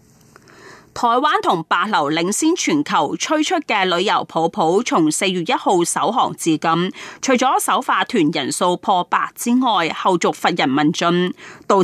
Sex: female